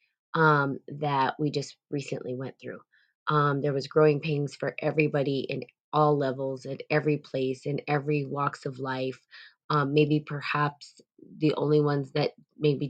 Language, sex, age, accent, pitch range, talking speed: English, female, 20-39, American, 140-155 Hz, 155 wpm